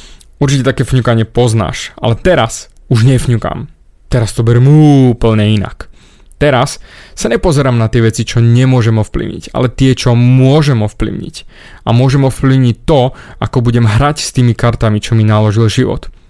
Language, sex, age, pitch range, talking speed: Slovak, male, 20-39, 115-145 Hz, 150 wpm